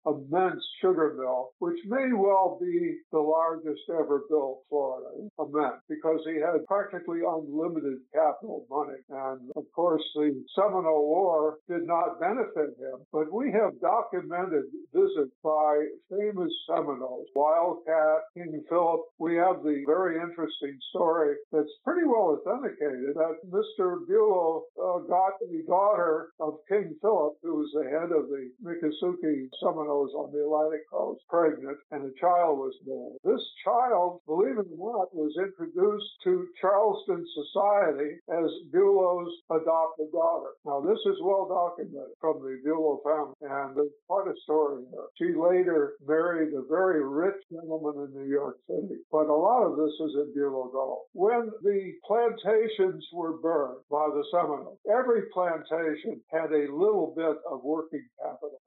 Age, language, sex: 60-79, English, male